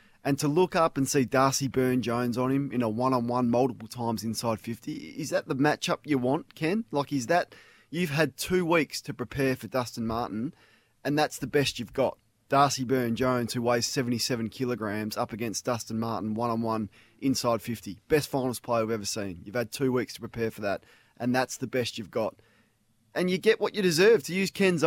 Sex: male